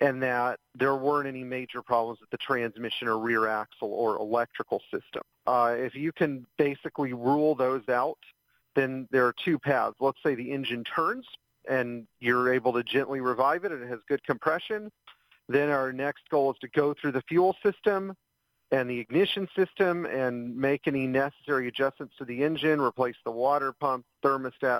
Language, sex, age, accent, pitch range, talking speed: English, male, 40-59, American, 120-145 Hz, 180 wpm